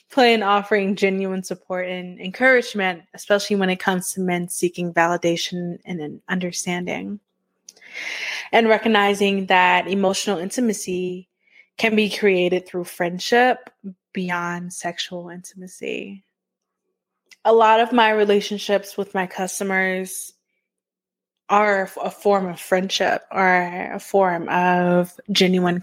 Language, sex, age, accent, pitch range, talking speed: English, female, 20-39, American, 180-215 Hz, 110 wpm